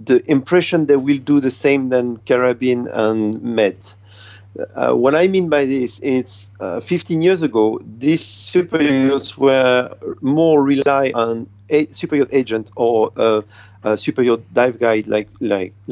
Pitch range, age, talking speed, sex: 110-140 Hz, 40-59, 145 wpm, male